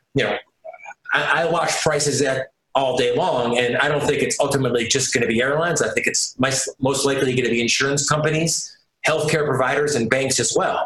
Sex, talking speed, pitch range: male, 215 wpm, 130-195 Hz